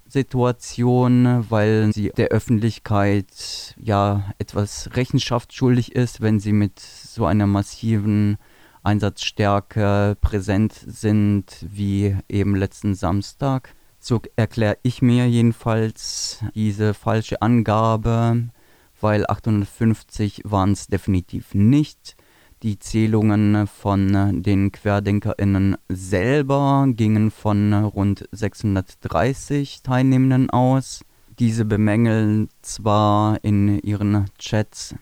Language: German